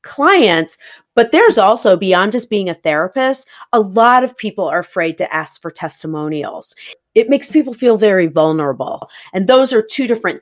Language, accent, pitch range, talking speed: English, American, 170-235 Hz, 175 wpm